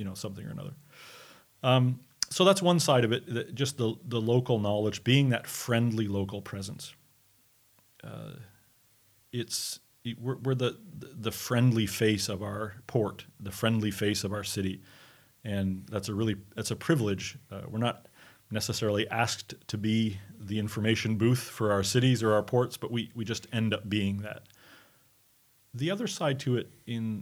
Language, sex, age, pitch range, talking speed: Danish, male, 40-59, 105-125 Hz, 170 wpm